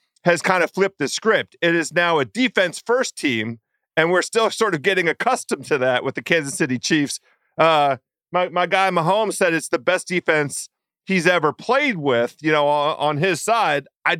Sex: male